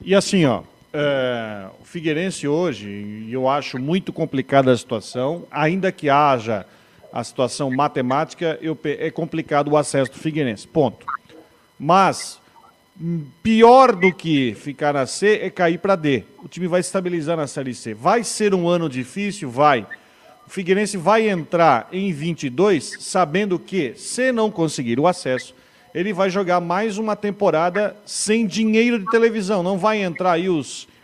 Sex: male